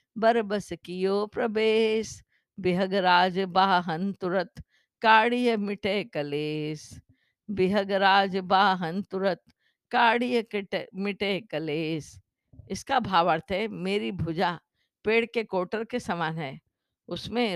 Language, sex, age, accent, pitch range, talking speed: Hindi, female, 50-69, native, 175-220 Hz, 75 wpm